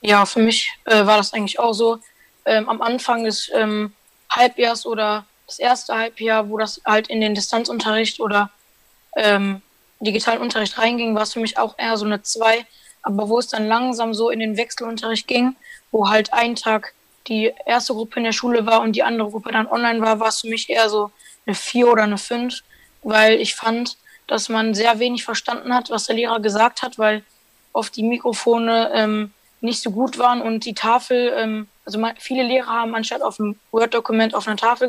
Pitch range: 215-235 Hz